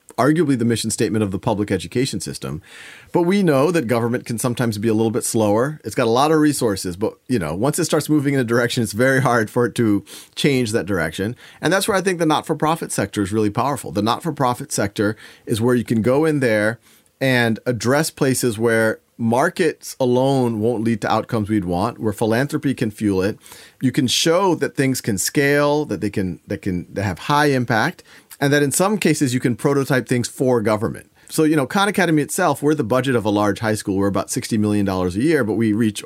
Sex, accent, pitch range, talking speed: male, American, 110-150 Hz, 225 wpm